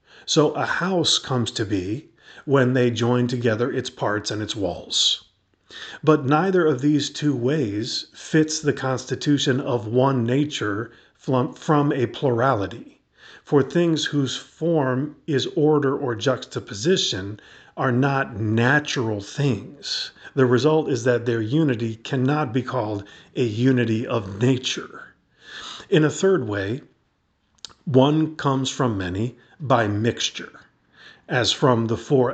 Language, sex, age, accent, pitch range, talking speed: English, male, 40-59, American, 115-145 Hz, 130 wpm